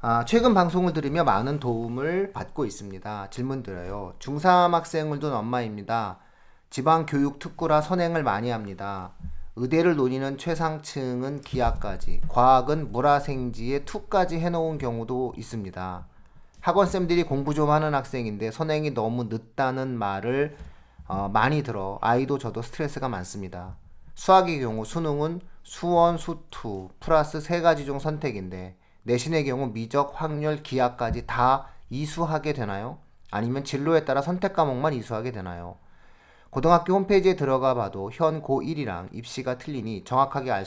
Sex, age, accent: male, 30-49, native